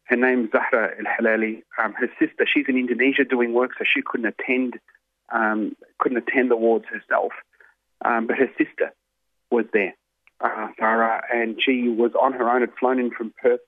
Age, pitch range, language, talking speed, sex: 30-49, 110-125 Hz, English, 190 wpm, male